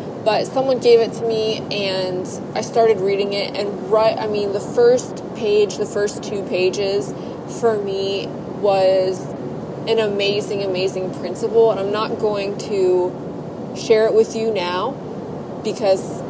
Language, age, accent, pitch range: English, 20-39, American, 190-225 Hz